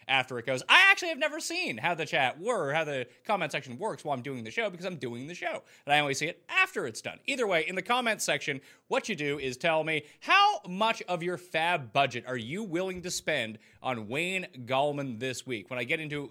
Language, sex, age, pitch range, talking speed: English, male, 30-49, 135-215 Hz, 250 wpm